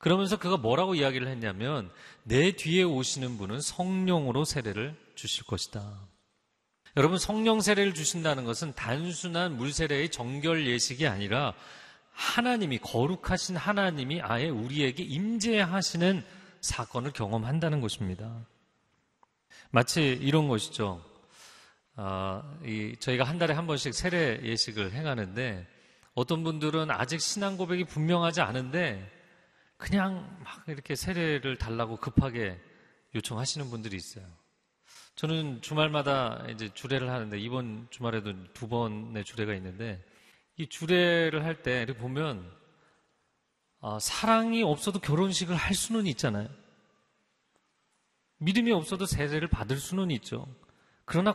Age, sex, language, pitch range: 40-59, male, Korean, 115-175 Hz